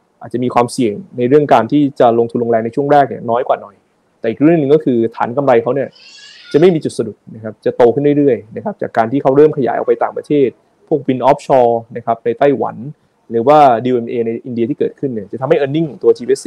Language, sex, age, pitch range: Thai, male, 20-39, 120-155 Hz